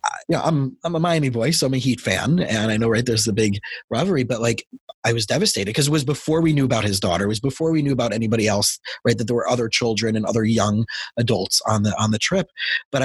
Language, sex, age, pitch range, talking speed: English, male, 30-49, 110-135 Hz, 260 wpm